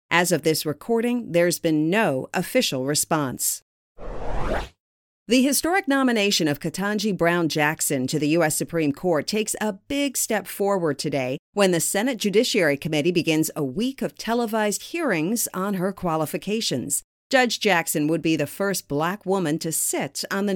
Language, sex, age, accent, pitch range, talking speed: English, female, 50-69, American, 160-220 Hz, 155 wpm